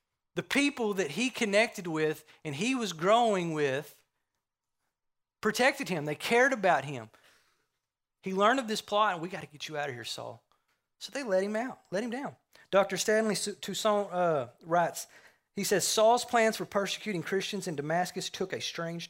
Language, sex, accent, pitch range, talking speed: English, male, American, 145-195 Hz, 180 wpm